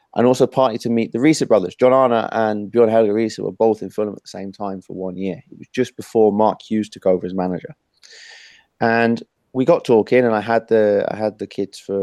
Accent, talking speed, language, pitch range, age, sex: British, 230 wpm, English, 95-115 Hz, 20-39, male